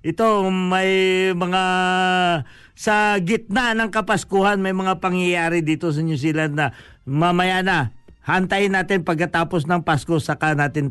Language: Filipino